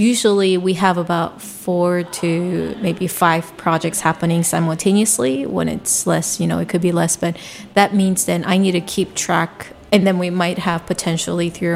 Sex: female